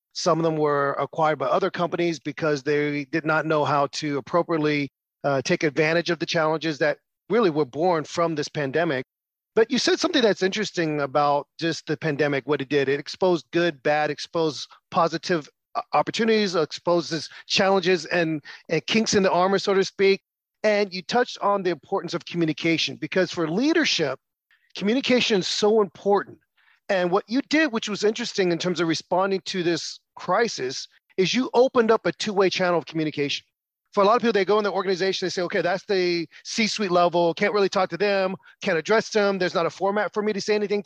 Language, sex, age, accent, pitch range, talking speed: English, male, 40-59, American, 160-205 Hz, 195 wpm